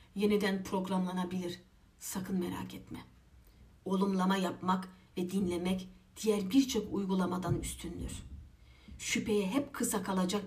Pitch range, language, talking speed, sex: 175-210 Hz, Turkish, 95 wpm, female